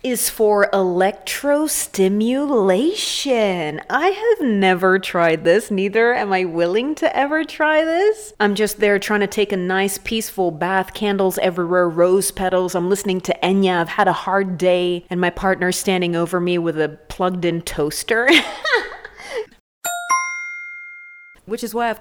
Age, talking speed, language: 30-49, 145 wpm, English